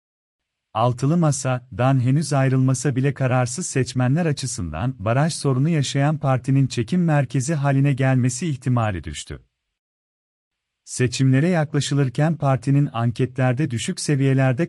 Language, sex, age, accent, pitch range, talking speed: Turkish, male, 40-59, native, 120-150 Hz, 100 wpm